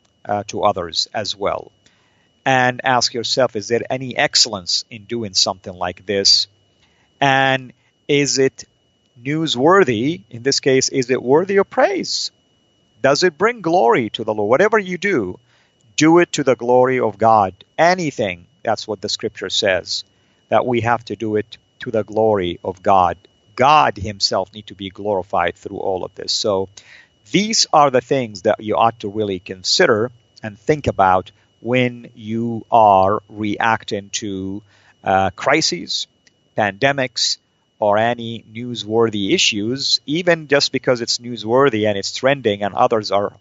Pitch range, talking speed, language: 105-135 Hz, 150 wpm, English